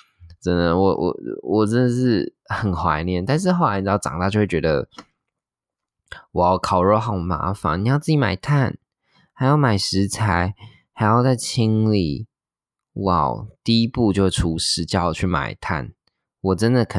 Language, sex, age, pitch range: Chinese, male, 20-39, 85-110 Hz